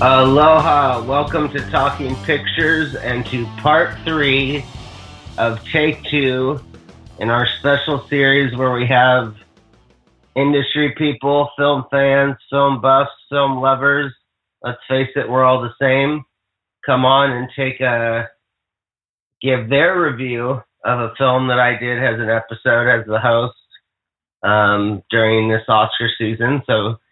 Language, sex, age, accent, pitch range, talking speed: English, male, 30-49, American, 110-135 Hz, 135 wpm